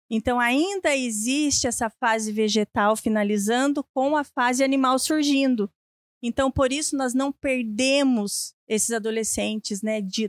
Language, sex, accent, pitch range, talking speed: Portuguese, female, Brazilian, 220-270 Hz, 130 wpm